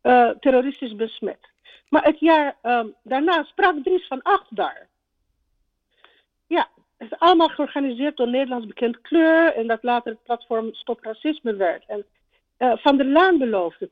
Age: 50-69